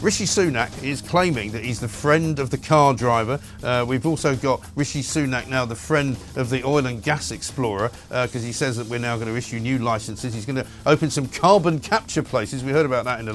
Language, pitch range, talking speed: English, 115-150 Hz, 240 wpm